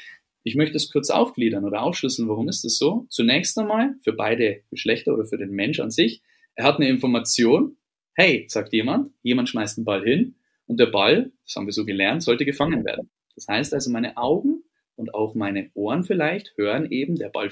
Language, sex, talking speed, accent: German, male, 200 wpm, German